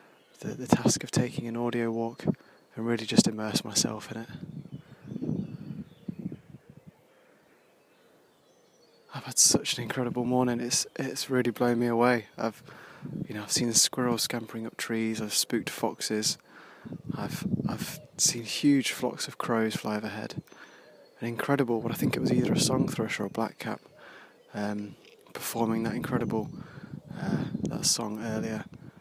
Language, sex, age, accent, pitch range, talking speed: English, male, 20-39, British, 110-125 Hz, 145 wpm